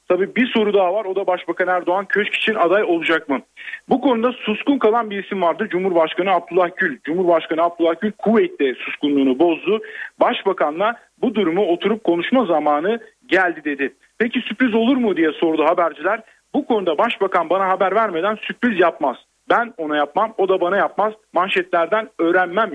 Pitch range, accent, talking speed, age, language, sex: 165-230 Hz, native, 165 wpm, 40-59, Turkish, male